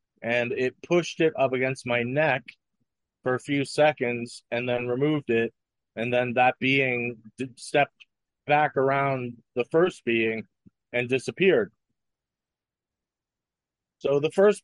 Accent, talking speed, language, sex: American, 125 wpm, English, male